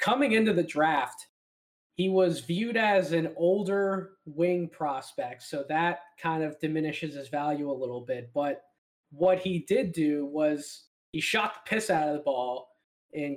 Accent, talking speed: American, 165 wpm